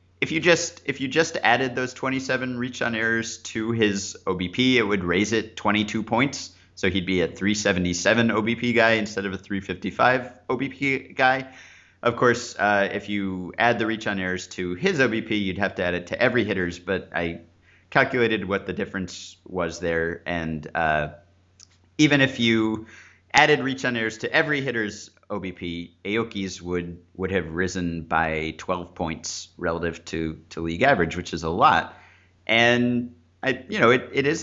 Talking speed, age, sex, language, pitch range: 175 wpm, 30-49, male, English, 90-120 Hz